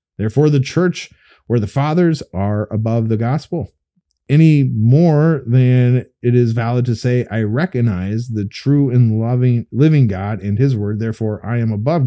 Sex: male